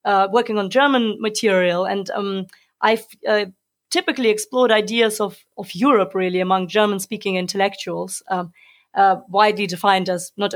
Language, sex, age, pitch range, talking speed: English, female, 30-49, 185-225 Hz, 140 wpm